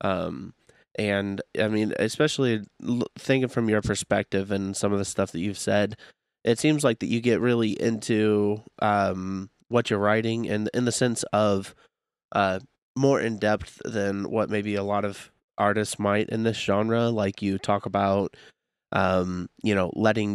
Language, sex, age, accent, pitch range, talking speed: English, male, 20-39, American, 100-110 Hz, 170 wpm